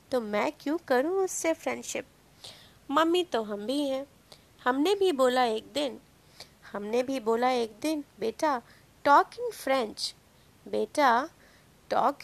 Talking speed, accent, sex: 130 wpm, native, female